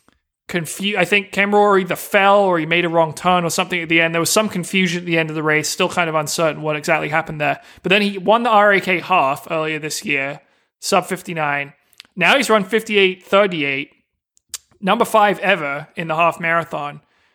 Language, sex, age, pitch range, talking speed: English, male, 20-39, 160-195 Hz, 195 wpm